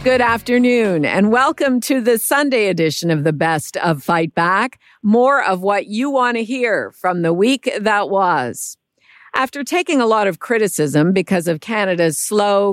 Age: 50-69